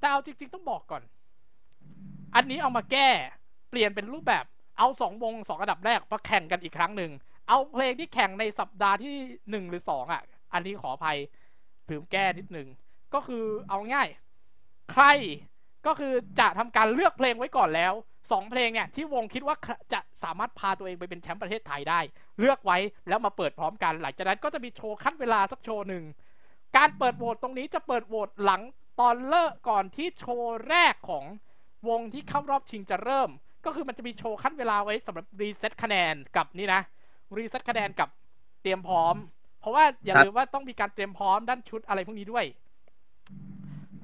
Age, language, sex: 20-39, Thai, male